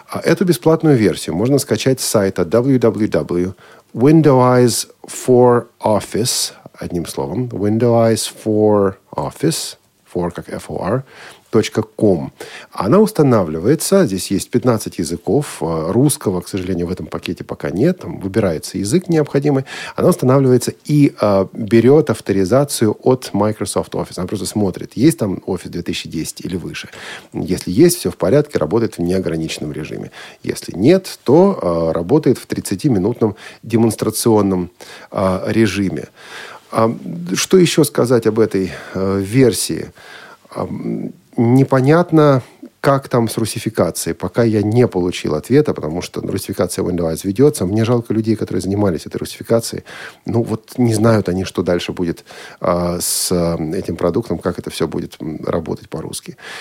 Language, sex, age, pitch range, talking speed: Russian, male, 40-59, 95-135 Hz, 115 wpm